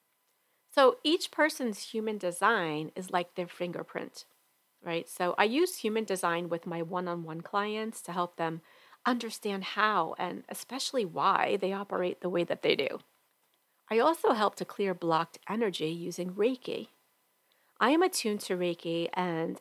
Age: 40-59